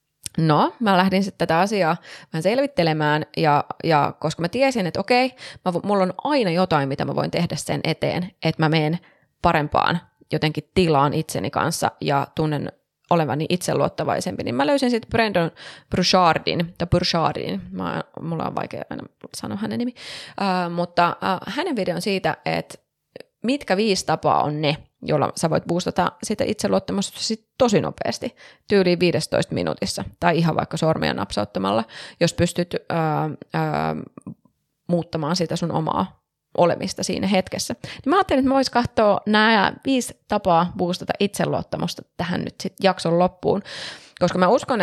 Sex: female